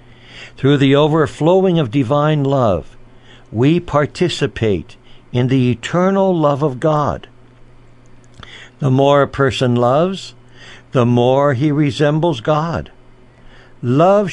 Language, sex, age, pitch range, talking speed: English, male, 60-79, 125-155 Hz, 105 wpm